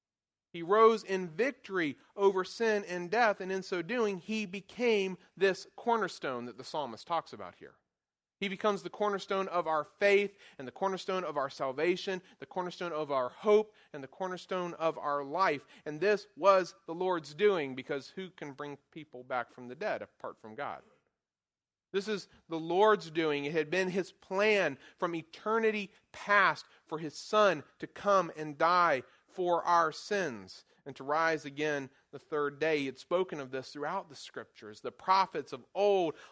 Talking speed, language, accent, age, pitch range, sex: 175 wpm, English, American, 40-59, 145-200 Hz, male